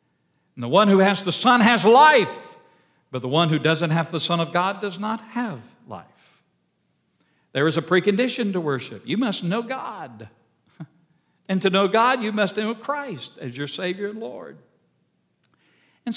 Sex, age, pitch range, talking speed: male, 60-79, 145-235 Hz, 175 wpm